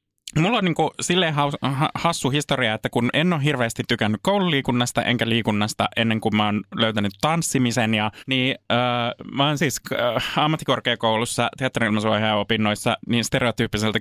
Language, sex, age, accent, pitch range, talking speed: Finnish, male, 20-39, native, 105-135 Hz, 135 wpm